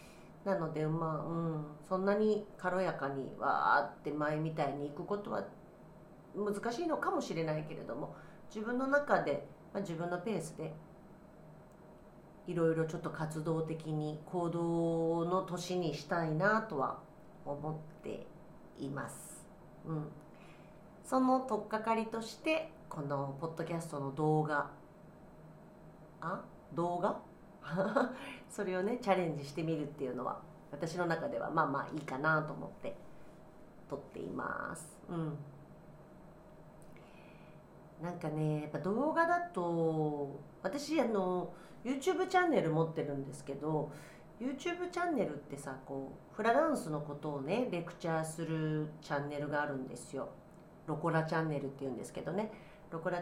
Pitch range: 155-205 Hz